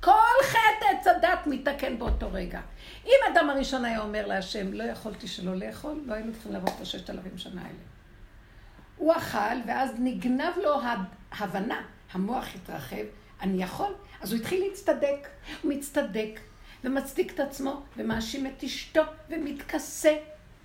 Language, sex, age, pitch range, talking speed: Hebrew, female, 50-69, 200-305 Hz, 145 wpm